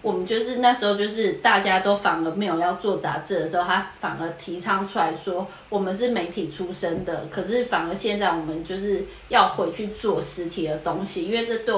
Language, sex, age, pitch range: Chinese, female, 20-39, 175-210 Hz